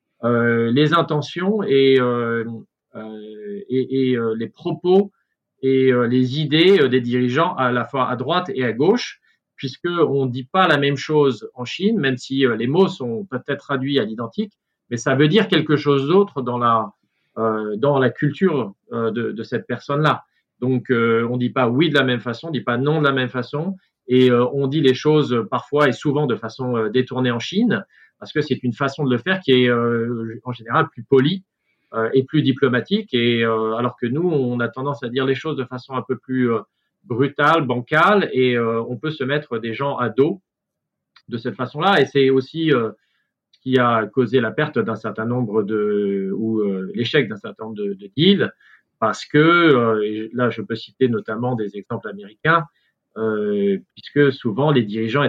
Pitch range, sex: 115-150 Hz, male